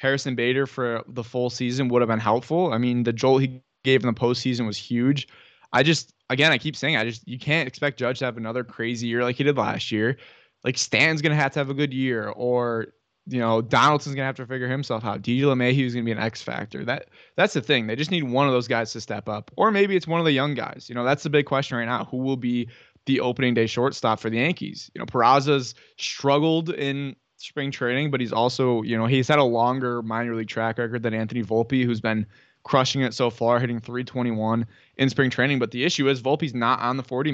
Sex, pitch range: male, 115-140 Hz